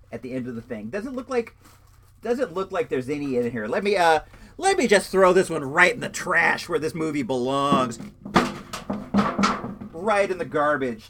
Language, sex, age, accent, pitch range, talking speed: English, male, 40-59, American, 120-190 Hz, 200 wpm